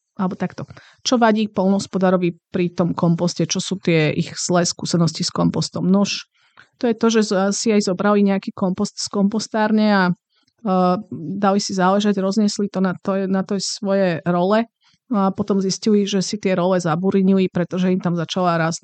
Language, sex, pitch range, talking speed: Slovak, female, 180-210 Hz, 170 wpm